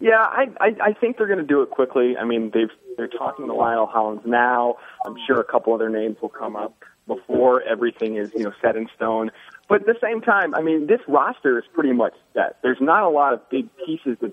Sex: male